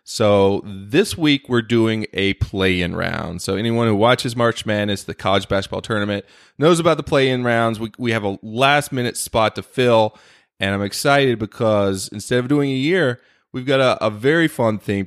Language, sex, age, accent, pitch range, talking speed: English, male, 30-49, American, 100-140 Hz, 200 wpm